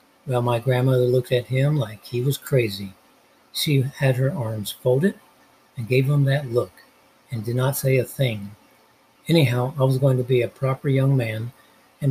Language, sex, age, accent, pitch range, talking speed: English, male, 60-79, American, 120-140 Hz, 185 wpm